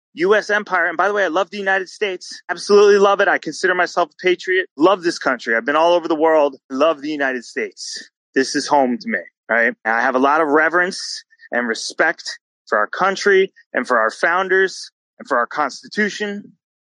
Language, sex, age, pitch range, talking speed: English, male, 30-49, 145-215 Hz, 205 wpm